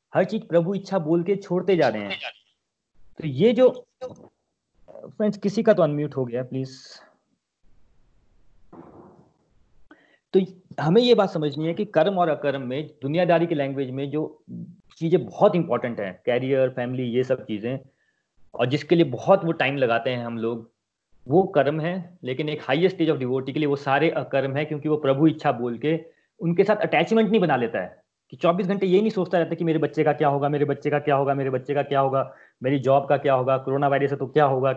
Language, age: Hindi, 30-49